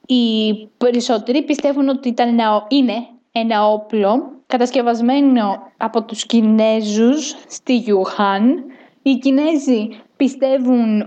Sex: female